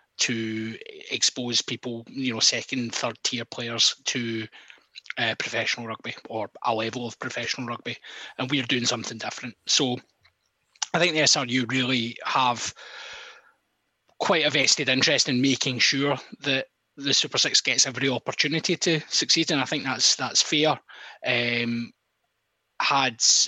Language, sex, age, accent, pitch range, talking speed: English, male, 20-39, British, 115-130 Hz, 145 wpm